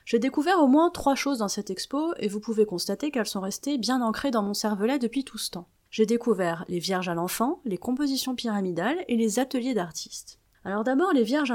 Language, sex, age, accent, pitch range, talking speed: French, female, 30-49, French, 195-260 Hz, 220 wpm